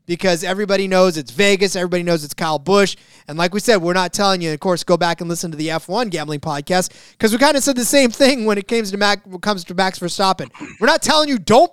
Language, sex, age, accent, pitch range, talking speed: English, male, 20-39, American, 160-205 Hz, 250 wpm